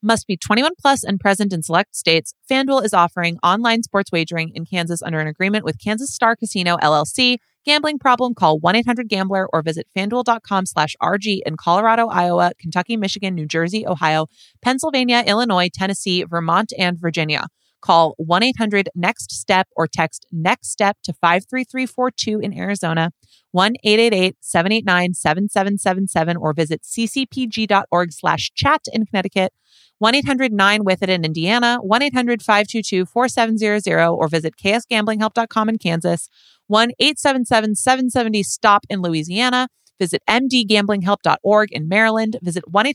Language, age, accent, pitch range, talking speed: English, 30-49, American, 170-225 Hz, 135 wpm